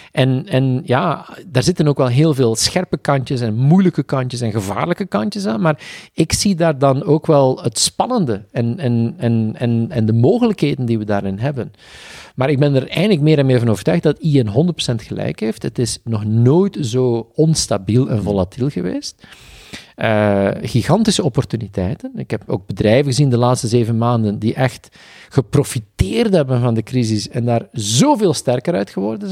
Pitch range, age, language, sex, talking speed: 110-145 Hz, 50-69, Dutch, male, 180 wpm